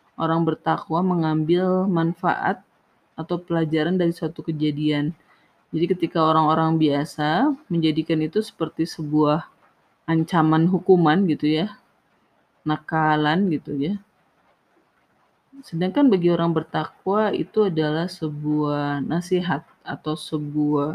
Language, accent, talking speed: Indonesian, native, 95 wpm